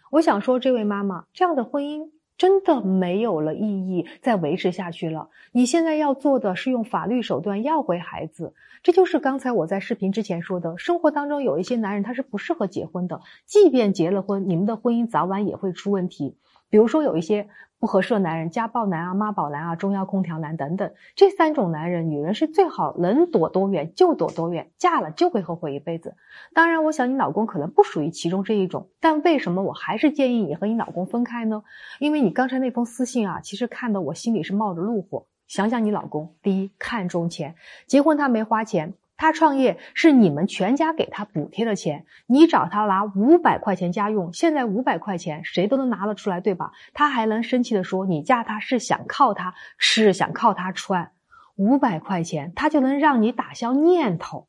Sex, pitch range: female, 185-260 Hz